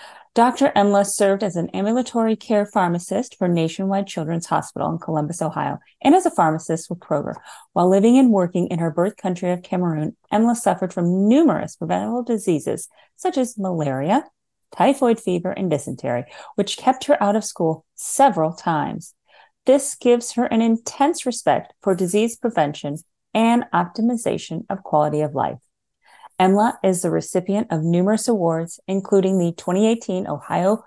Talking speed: 150 wpm